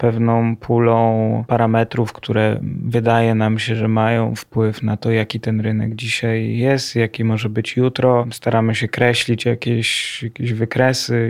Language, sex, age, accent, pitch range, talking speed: Polish, male, 20-39, native, 115-130 Hz, 145 wpm